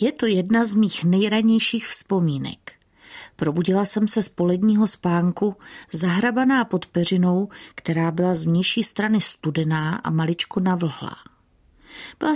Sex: female